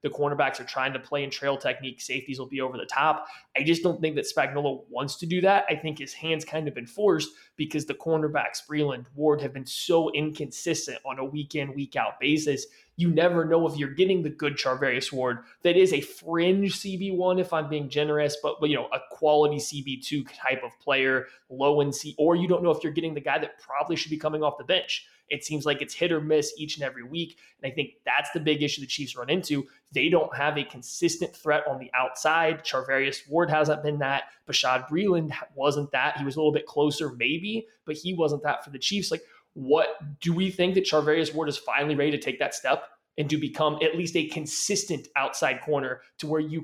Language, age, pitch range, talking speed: English, 20-39, 140-160 Hz, 230 wpm